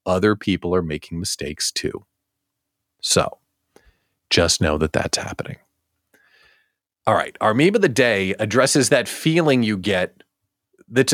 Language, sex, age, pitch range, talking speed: English, male, 40-59, 105-170 Hz, 135 wpm